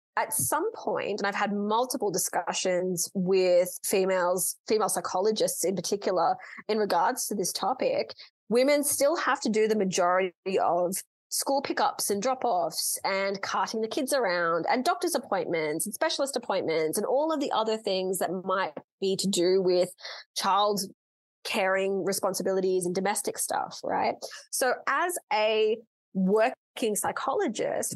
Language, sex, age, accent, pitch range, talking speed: English, female, 20-39, Australian, 190-240 Hz, 140 wpm